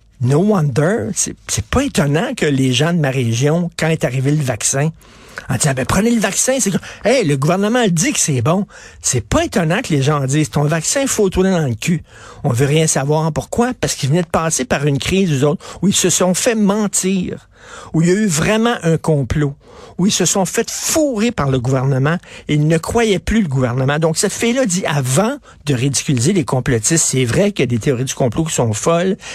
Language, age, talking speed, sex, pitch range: French, 60-79, 230 wpm, male, 140-190 Hz